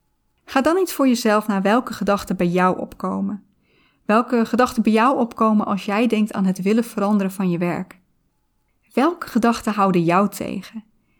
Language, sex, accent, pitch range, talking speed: Dutch, female, Dutch, 195-235 Hz, 165 wpm